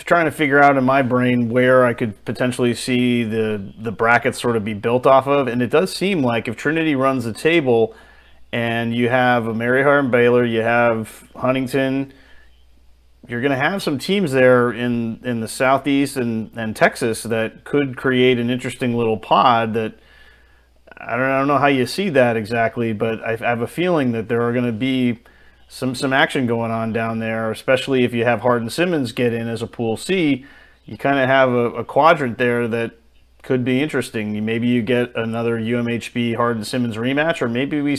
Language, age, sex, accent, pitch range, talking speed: English, 30-49, male, American, 115-135 Hz, 200 wpm